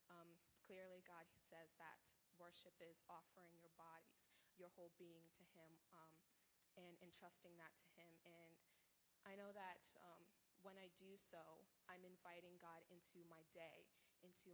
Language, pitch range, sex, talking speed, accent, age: English, 165-190 Hz, female, 155 wpm, American, 20-39